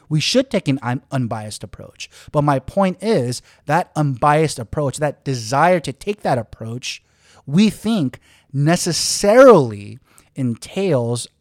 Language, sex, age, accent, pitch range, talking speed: English, male, 30-49, American, 115-160 Hz, 120 wpm